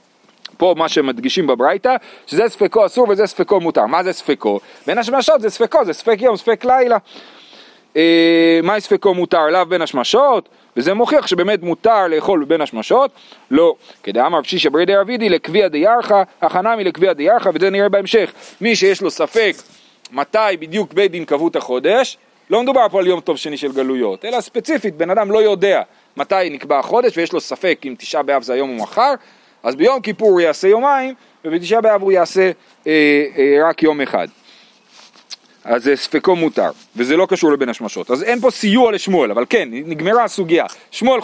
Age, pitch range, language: 40-59, 165-235 Hz, Hebrew